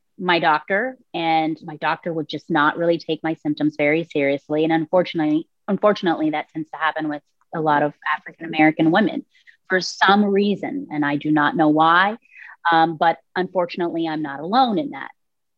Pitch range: 160-210 Hz